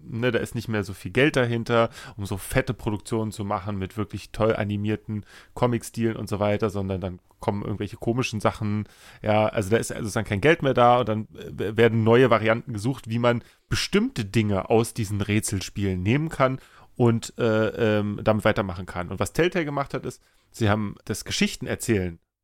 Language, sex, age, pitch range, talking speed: German, male, 30-49, 105-130 Hz, 185 wpm